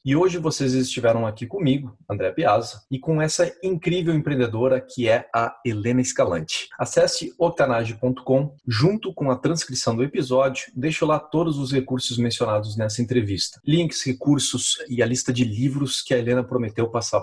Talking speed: 160 wpm